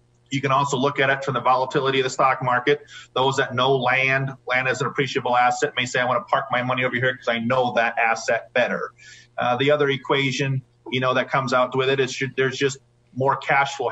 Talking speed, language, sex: 240 wpm, English, male